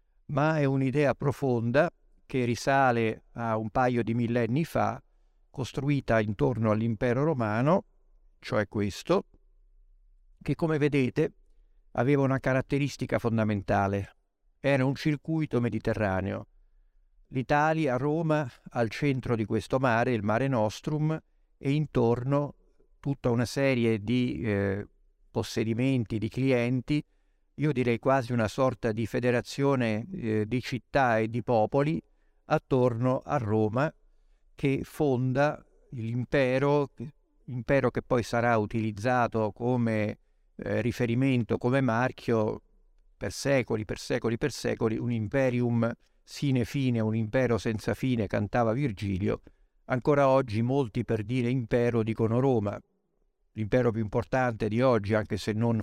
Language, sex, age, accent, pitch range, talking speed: Italian, male, 50-69, native, 110-135 Hz, 120 wpm